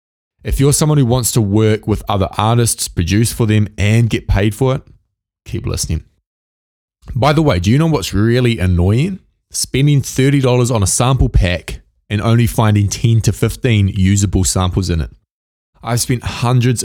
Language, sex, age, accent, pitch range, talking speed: English, male, 20-39, Australian, 90-115 Hz, 170 wpm